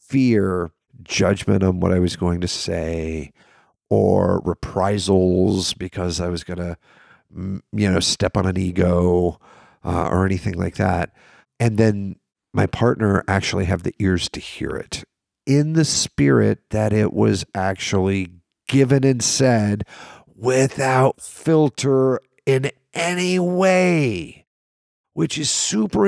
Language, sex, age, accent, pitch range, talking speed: English, male, 50-69, American, 90-115 Hz, 130 wpm